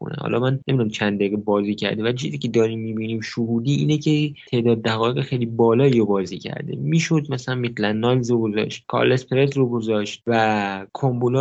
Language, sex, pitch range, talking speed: Persian, male, 105-130 Hz, 175 wpm